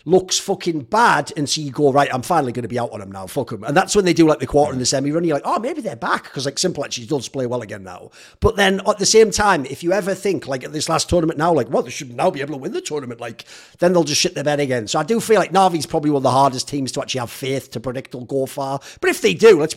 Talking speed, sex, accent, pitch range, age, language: 325 wpm, male, British, 140-180 Hz, 40-59, English